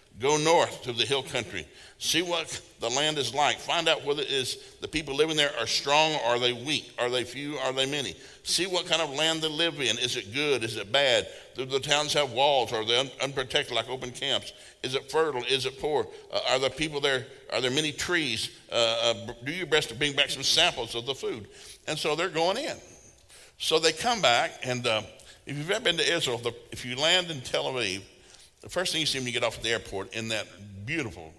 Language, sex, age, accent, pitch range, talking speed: English, male, 60-79, American, 120-165 Hz, 235 wpm